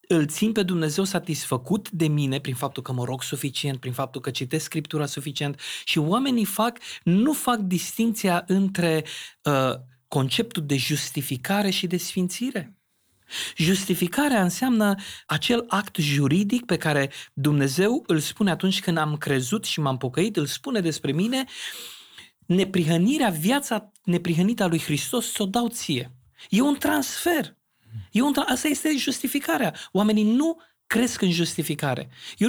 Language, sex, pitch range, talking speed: Romanian, male, 145-210 Hz, 140 wpm